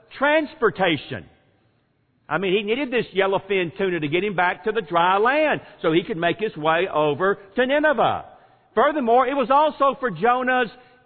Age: 50-69